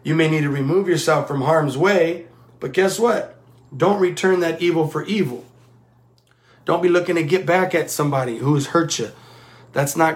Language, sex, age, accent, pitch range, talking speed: English, male, 30-49, American, 125-165 Hz, 190 wpm